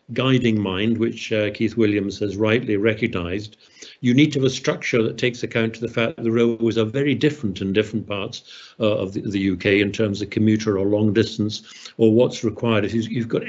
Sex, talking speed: male, 215 wpm